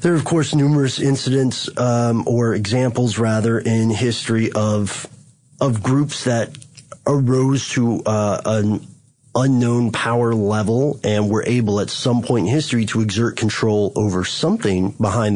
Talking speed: 145 wpm